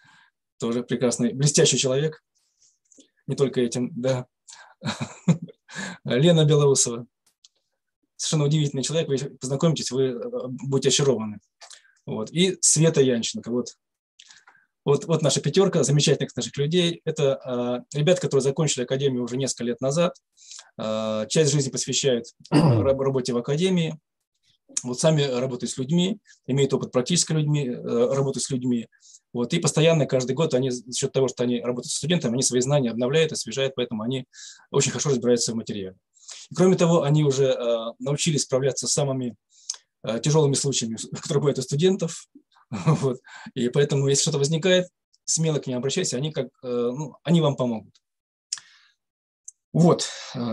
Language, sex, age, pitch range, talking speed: Russian, male, 20-39, 125-155 Hz, 125 wpm